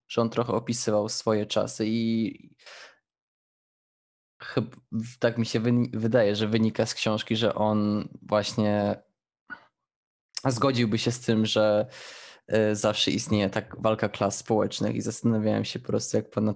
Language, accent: Polish, native